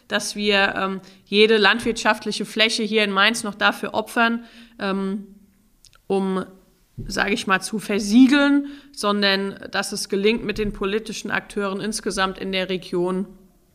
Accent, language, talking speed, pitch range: German, German, 135 wpm, 195-230 Hz